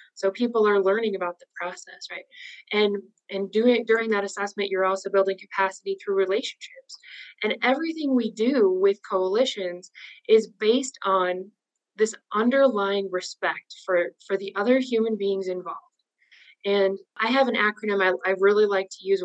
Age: 20-39